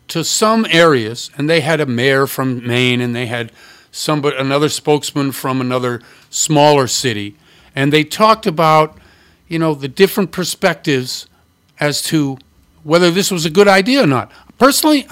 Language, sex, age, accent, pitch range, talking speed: English, male, 50-69, American, 135-185 Hz, 160 wpm